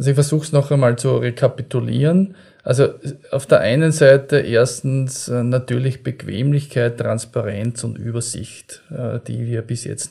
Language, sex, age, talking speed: German, male, 20-39, 135 wpm